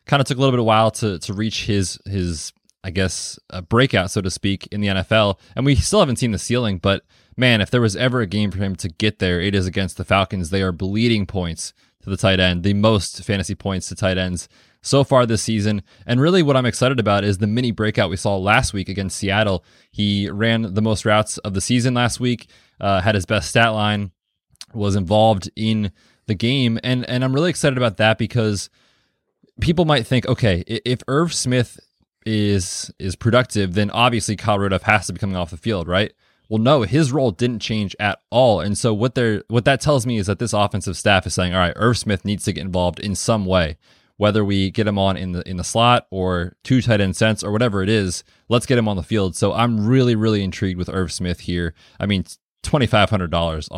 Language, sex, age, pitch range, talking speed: English, male, 20-39, 95-120 Hz, 230 wpm